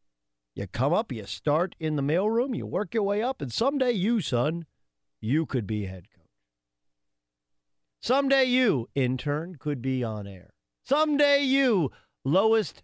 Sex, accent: male, American